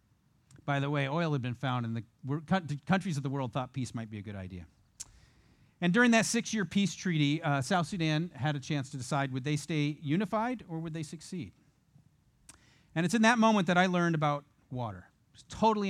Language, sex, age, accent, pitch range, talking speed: English, male, 40-59, American, 130-175 Hz, 210 wpm